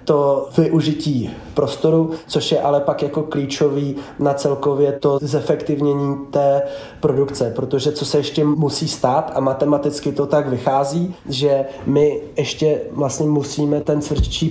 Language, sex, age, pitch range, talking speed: Slovak, male, 20-39, 140-155 Hz, 135 wpm